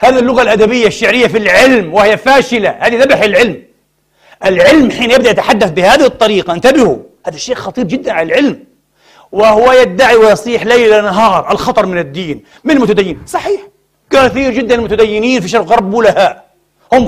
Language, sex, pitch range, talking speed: Arabic, male, 205-255 Hz, 145 wpm